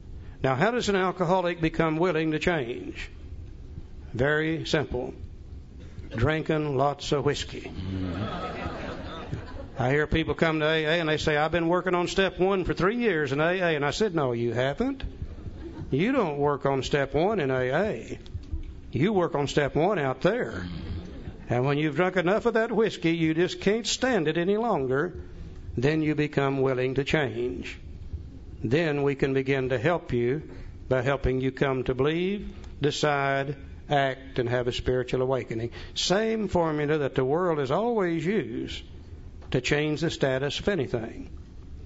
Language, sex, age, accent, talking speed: English, male, 60-79, American, 160 wpm